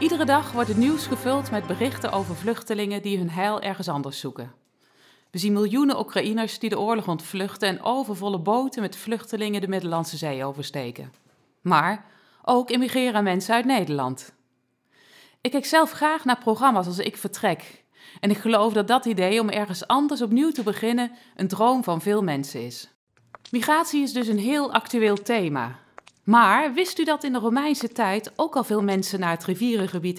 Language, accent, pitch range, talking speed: Dutch, Dutch, 190-250 Hz, 175 wpm